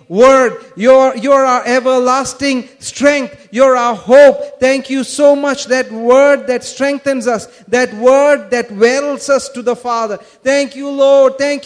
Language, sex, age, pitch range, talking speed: English, male, 40-59, 235-285 Hz, 155 wpm